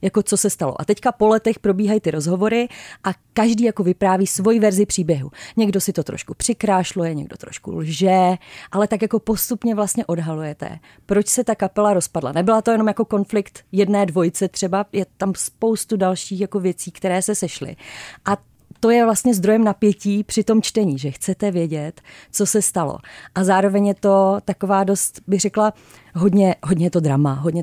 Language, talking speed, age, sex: Czech, 180 wpm, 30-49, female